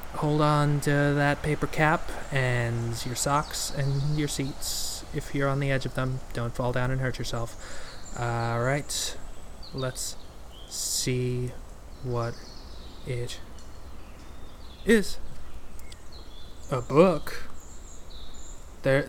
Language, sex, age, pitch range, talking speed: English, male, 20-39, 85-140 Hz, 105 wpm